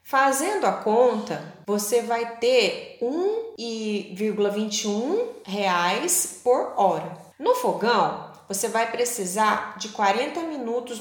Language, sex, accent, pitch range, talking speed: Portuguese, female, Brazilian, 200-295 Hz, 100 wpm